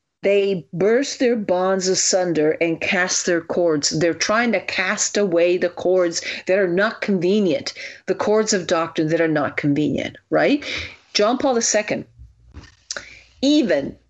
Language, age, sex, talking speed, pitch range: English, 50-69, female, 140 wpm, 165-215 Hz